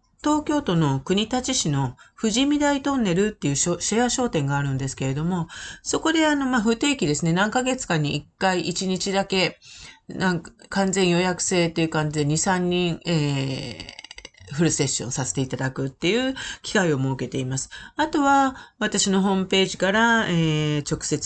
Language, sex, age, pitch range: Japanese, female, 40-59, 150-215 Hz